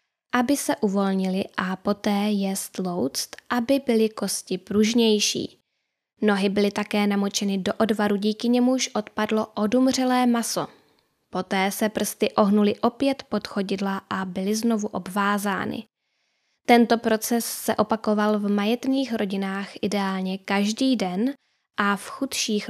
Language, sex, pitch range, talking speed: Czech, female, 195-235 Hz, 120 wpm